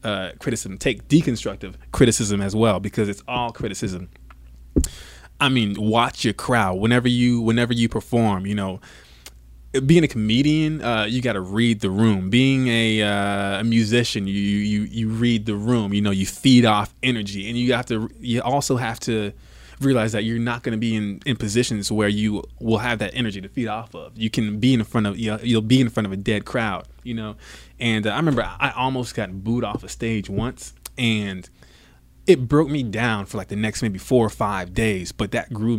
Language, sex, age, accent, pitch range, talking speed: English, male, 20-39, American, 100-120 Hz, 205 wpm